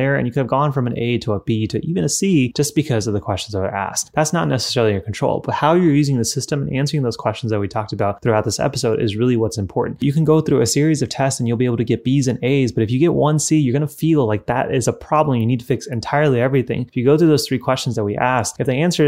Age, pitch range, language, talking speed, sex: 20-39, 110-135 Hz, English, 315 wpm, male